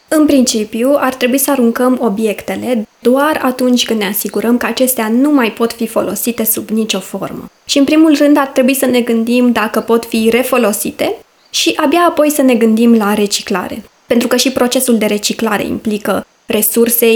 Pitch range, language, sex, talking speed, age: 225-280 Hz, Romanian, female, 180 wpm, 20-39